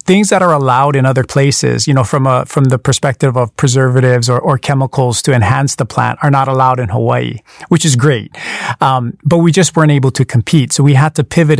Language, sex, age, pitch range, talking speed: English, male, 40-59, 130-160 Hz, 230 wpm